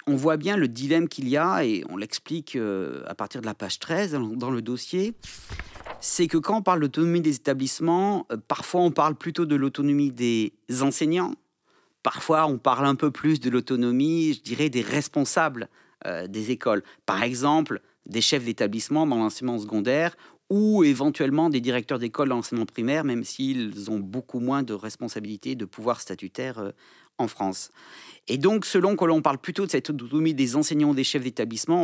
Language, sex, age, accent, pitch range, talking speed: French, male, 40-59, French, 125-165 Hz, 185 wpm